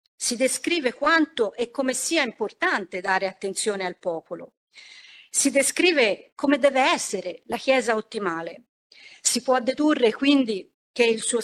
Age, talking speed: 50-69, 135 wpm